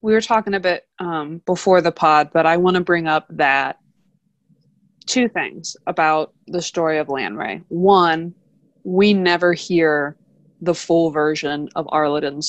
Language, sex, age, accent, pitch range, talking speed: English, female, 20-39, American, 165-195 Hz, 155 wpm